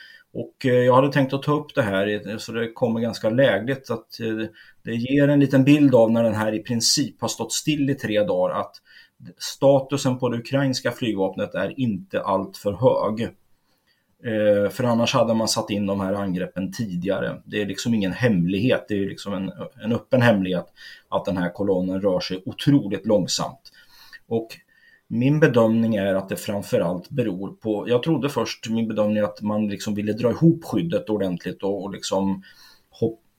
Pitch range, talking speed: 100-120 Hz, 180 wpm